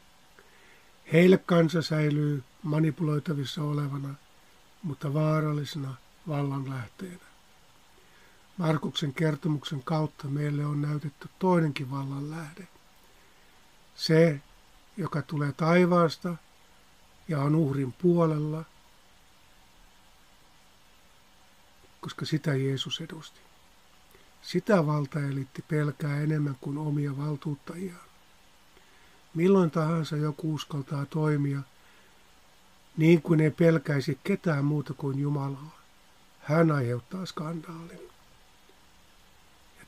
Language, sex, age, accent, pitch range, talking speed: Finnish, male, 50-69, native, 140-165 Hz, 80 wpm